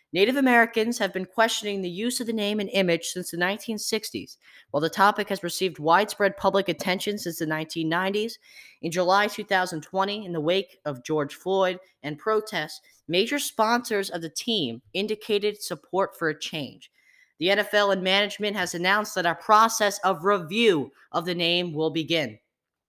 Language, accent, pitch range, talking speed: English, American, 160-205 Hz, 165 wpm